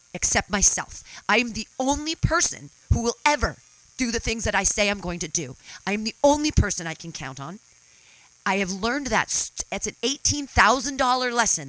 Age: 40-59